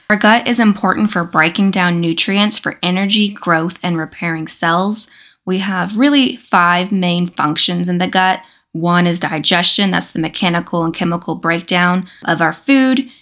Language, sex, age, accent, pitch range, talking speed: English, female, 20-39, American, 170-210 Hz, 160 wpm